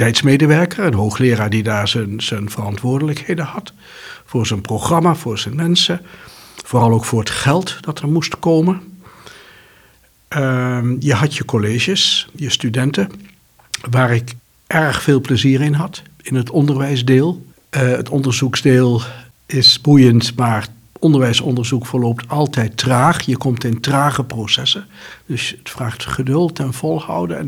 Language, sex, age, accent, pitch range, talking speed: Dutch, male, 60-79, Dutch, 120-150 Hz, 135 wpm